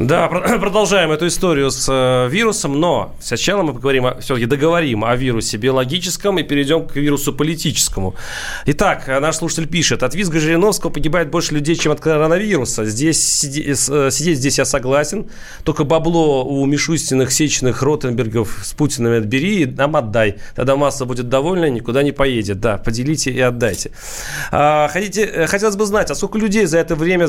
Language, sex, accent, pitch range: Russian, male, native, 135-170 Hz